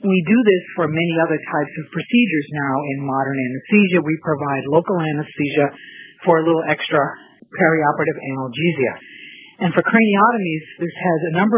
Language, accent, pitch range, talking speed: English, American, 145-185 Hz, 155 wpm